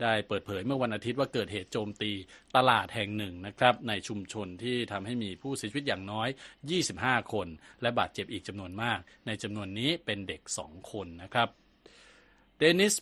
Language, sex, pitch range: Thai, male, 100-125 Hz